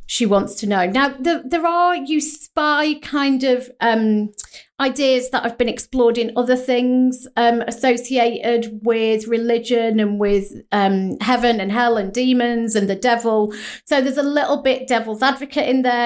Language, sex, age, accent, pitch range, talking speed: English, female, 40-59, British, 220-260 Hz, 170 wpm